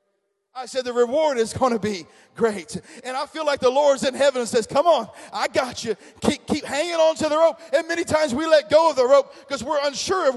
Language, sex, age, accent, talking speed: English, male, 40-59, American, 255 wpm